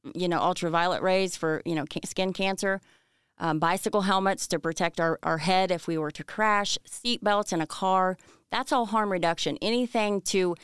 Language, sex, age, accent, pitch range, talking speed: English, female, 30-49, American, 170-205 Hz, 180 wpm